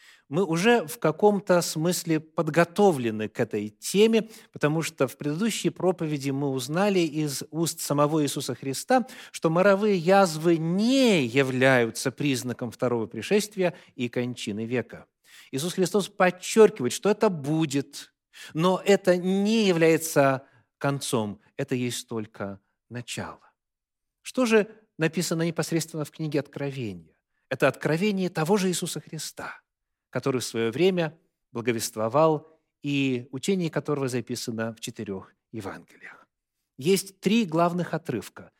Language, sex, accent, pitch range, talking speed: Russian, male, native, 130-185 Hz, 120 wpm